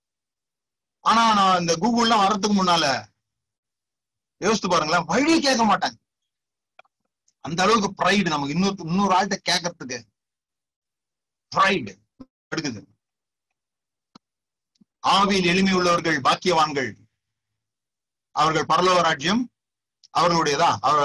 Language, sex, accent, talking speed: Tamil, male, native, 75 wpm